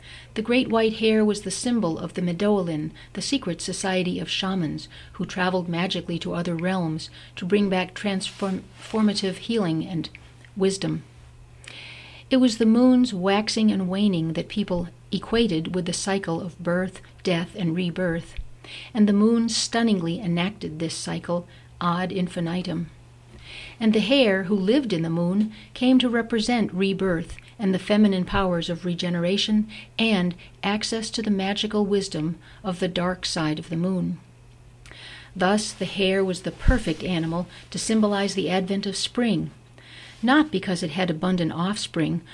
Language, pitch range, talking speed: English, 170-210 Hz, 150 wpm